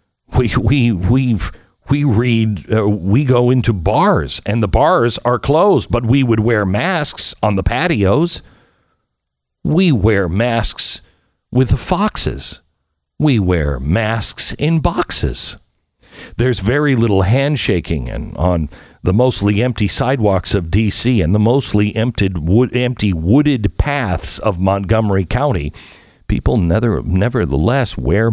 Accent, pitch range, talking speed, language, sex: American, 80-120 Hz, 125 wpm, English, male